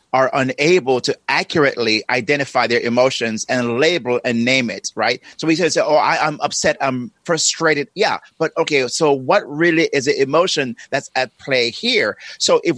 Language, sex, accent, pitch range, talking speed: English, male, American, 140-185 Hz, 170 wpm